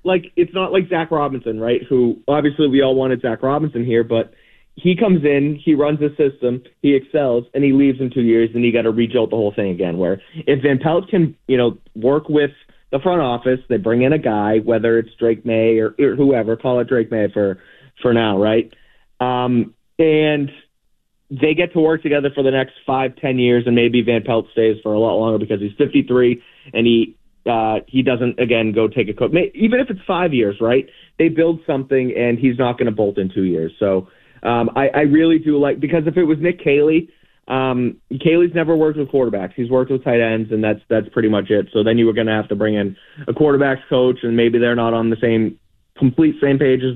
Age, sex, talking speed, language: 30-49, male, 230 wpm, English